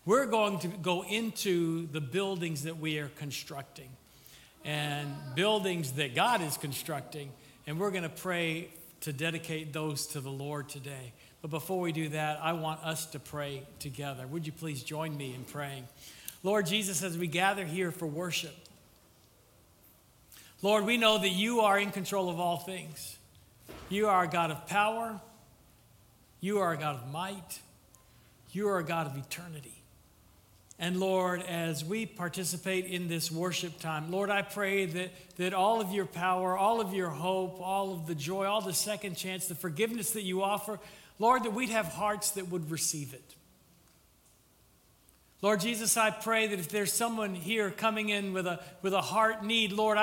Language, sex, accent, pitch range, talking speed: English, male, American, 155-200 Hz, 175 wpm